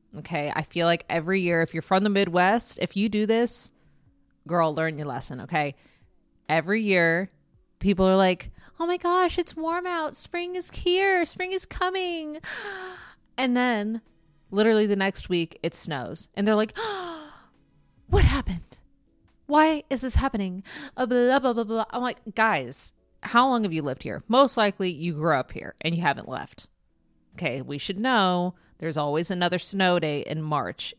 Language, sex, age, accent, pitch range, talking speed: English, female, 20-39, American, 150-225 Hz, 165 wpm